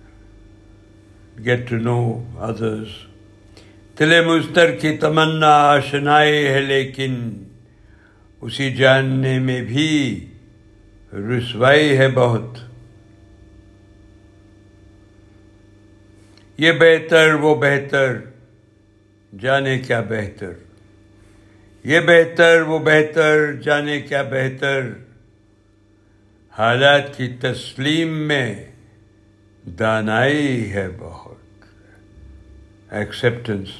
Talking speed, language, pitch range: 55 wpm, Urdu, 105-140 Hz